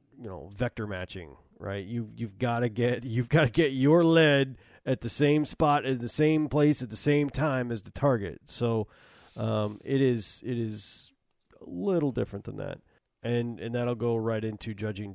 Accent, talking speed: American, 195 wpm